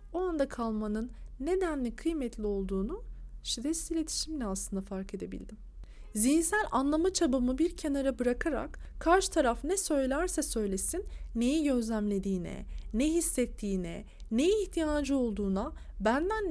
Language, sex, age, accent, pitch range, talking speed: Turkish, female, 40-59, native, 215-325 Hz, 110 wpm